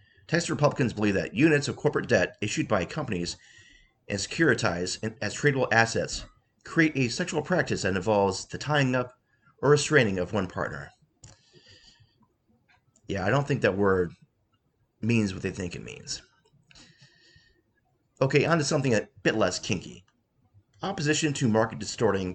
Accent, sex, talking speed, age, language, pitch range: American, male, 145 wpm, 30-49, English, 100-130 Hz